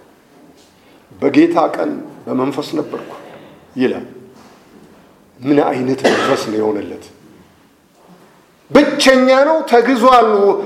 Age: 50-69